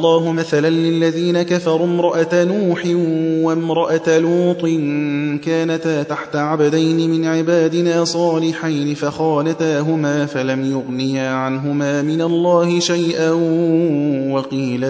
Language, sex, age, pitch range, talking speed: Persian, male, 30-49, 145-175 Hz, 95 wpm